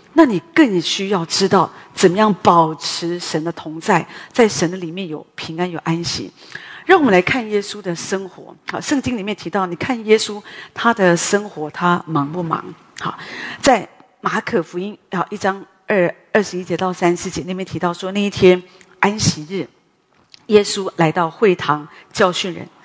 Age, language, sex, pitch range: 40-59, English, female, 170-210 Hz